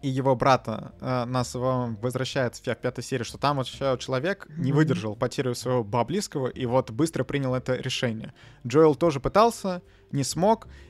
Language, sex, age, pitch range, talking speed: Russian, male, 20-39, 125-160 Hz, 160 wpm